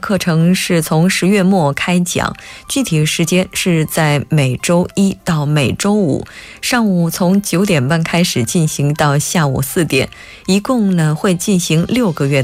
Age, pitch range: 20-39, 150-200 Hz